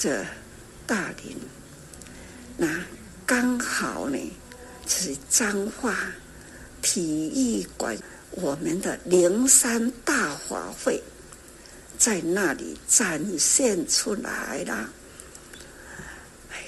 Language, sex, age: Chinese, female, 60-79